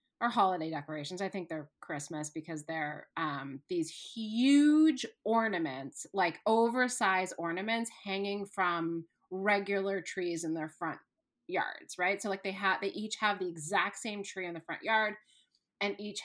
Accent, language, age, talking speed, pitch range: American, English, 30-49, 155 wpm, 180-250 Hz